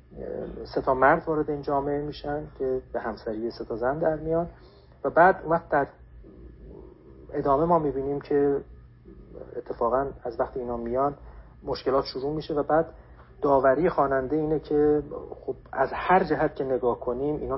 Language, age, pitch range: Persian, 40-59, 110-145 Hz